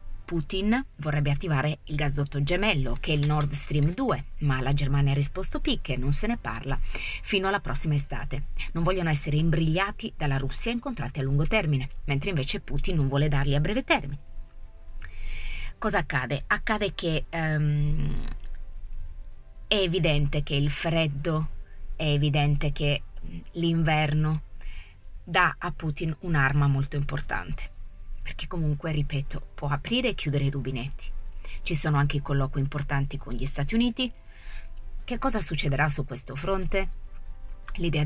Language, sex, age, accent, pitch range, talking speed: Italian, female, 20-39, native, 135-165 Hz, 145 wpm